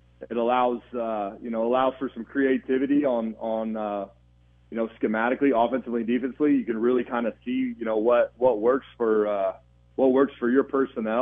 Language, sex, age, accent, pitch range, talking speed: English, male, 40-59, American, 105-130 Hz, 185 wpm